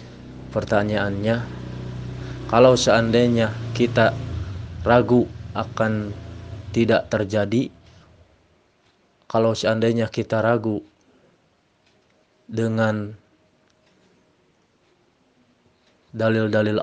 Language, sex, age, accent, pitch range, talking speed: Indonesian, male, 20-39, native, 100-115 Hz, 50 wpm